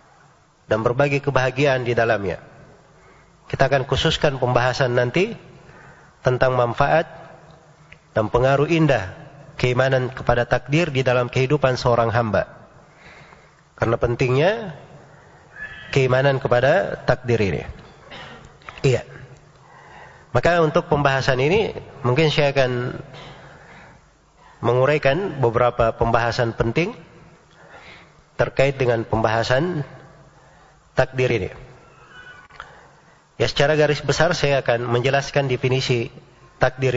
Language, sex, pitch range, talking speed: Indonesian, male, 125-155 Hz, 90 wpm